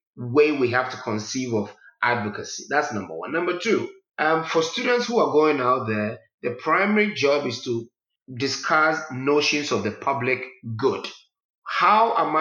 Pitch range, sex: 125-165 Hz, male